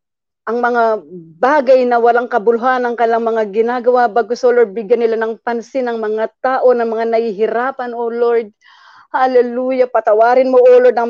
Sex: female